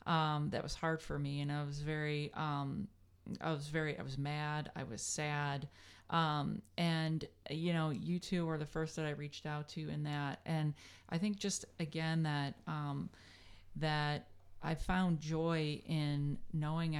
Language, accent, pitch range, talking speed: English, American, 145-160 Hz, 175 wpm